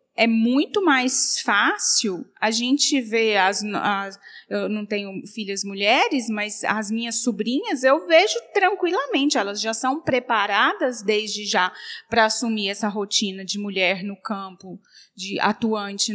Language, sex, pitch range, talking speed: Portuguese, female, 215-265 Hz, 140 wpm